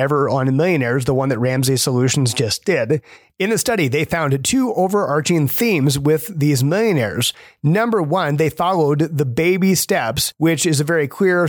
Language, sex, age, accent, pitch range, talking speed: English, male, 30-49, American, 135-165 Hz, 170 wpm